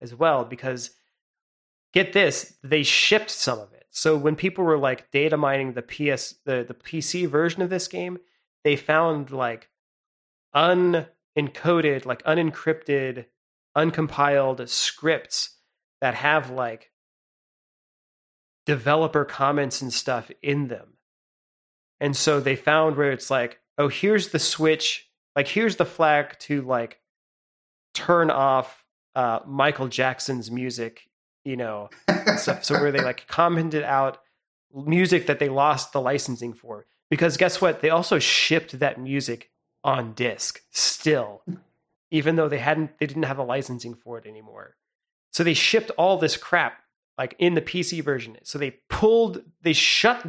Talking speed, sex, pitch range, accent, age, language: 145 wpm, male, 130-165 Hz, American, 30-49, English